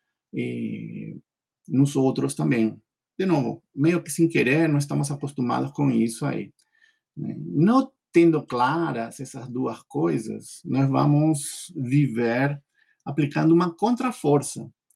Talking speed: 110 wpm